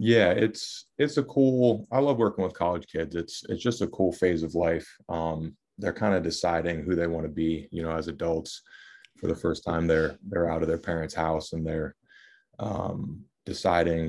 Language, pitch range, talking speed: English, 80-85 Hz, 205 wpm